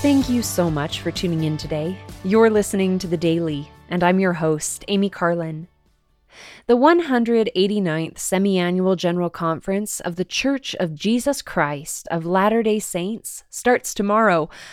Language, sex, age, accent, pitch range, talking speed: English, female, 20-39, American, 175-230 Hz, 145 wpm